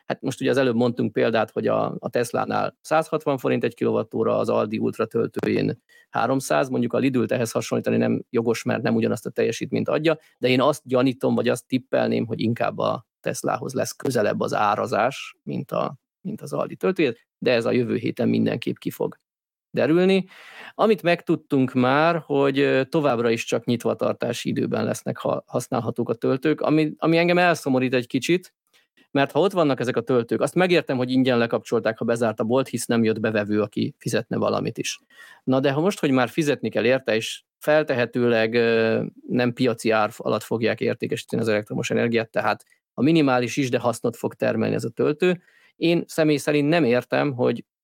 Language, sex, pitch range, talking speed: Hungarian, male, 120-155 Hz, 180 wpm